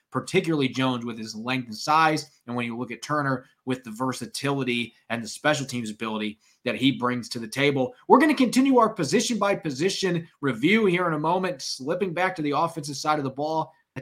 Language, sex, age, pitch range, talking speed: English, male, 30-49, 130-180 Hz, 215 wpm